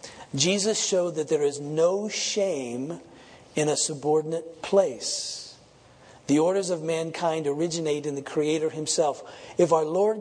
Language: English